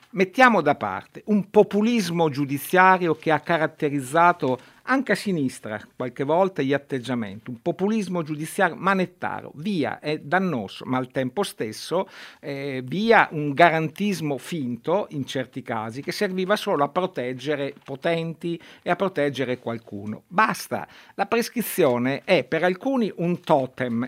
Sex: male